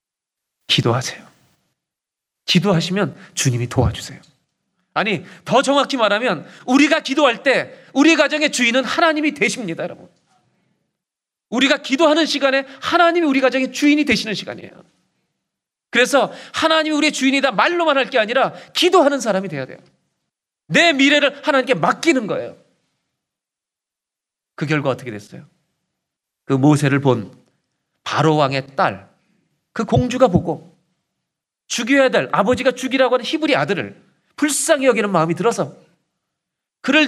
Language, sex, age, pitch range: Korean, male, 40-59, 160-260 Hz